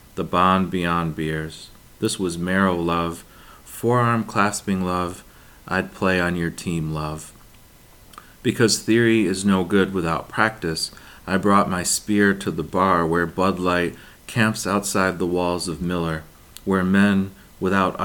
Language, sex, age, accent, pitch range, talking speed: English, male, 30-49, American, 85-100 Hz, 145 wpm